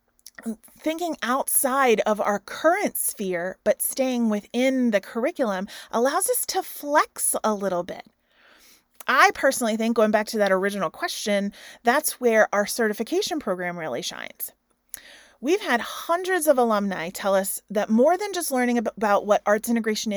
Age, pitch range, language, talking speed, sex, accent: 30-49, 205-275 Hz, English, 150 wpm, female, American